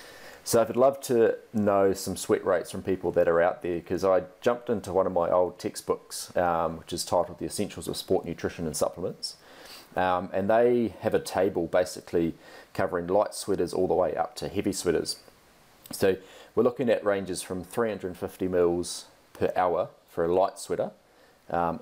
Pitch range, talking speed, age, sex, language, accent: 85-95 Hz, 180 wpm, 30-49, male, English, Australian